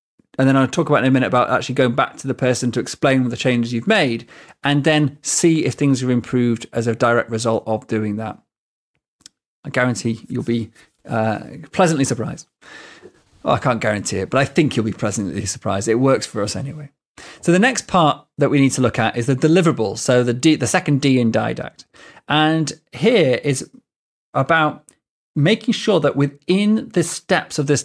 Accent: British